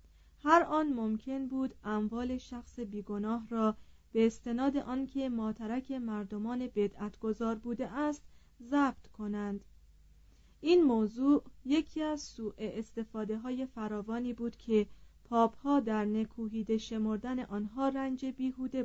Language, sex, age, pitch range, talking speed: Persian, female, 30-49, 210-260 Hz, 115 wpm